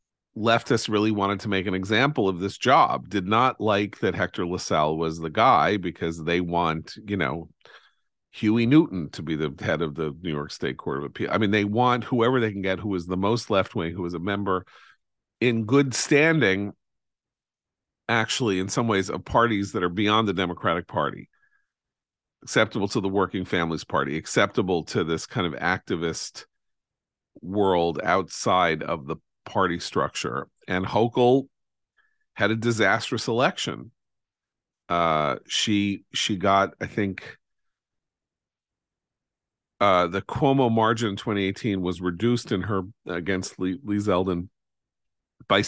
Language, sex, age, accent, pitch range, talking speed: English, male, 40-59, American, 90-115 Hz, 150 wpm